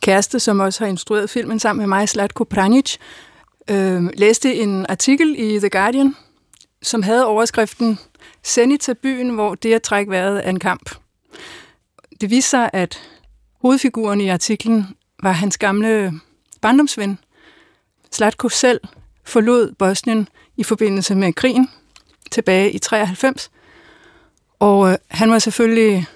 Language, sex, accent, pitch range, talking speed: Danish, female, native, 200-245 Hz, 135 wpm